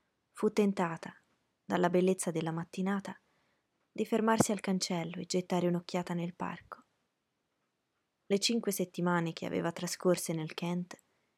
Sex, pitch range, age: female, 170-195 Hz, 20-39